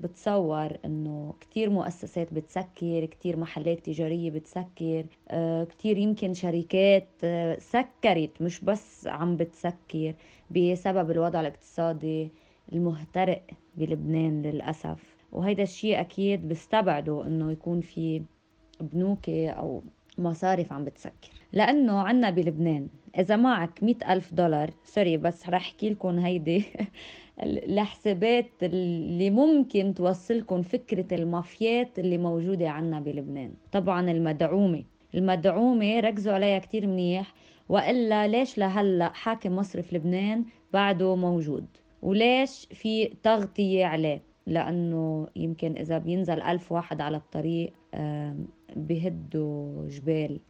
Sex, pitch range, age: female, 160-200 Hz, 20-39